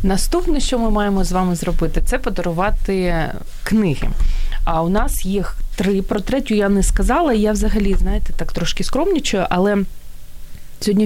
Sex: female